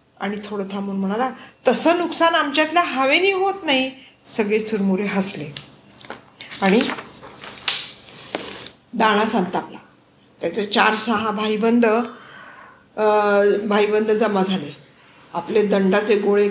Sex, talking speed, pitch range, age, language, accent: female, 100 wpm, 205-260 Hz, 50-69, Marathi, native